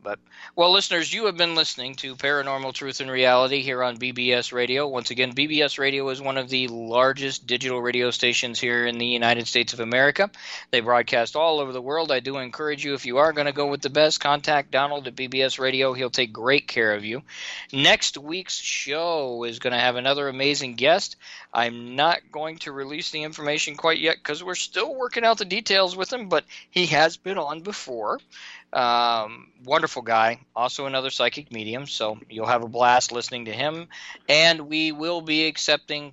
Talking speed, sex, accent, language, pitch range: 200 wpm, male, American, English, 125-155 Hz